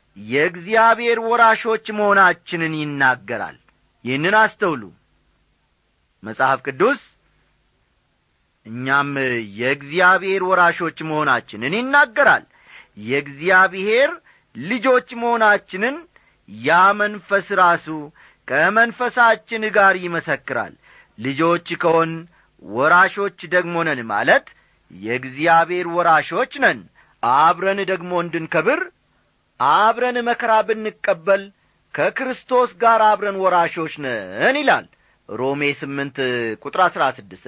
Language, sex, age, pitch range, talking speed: Amharic, male, 50-69, 145-225 Hz, 70 wpm